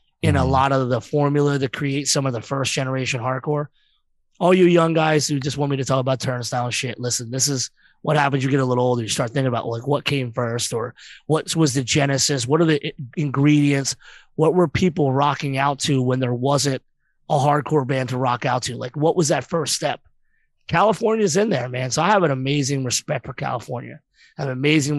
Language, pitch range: English, 130-155 Hz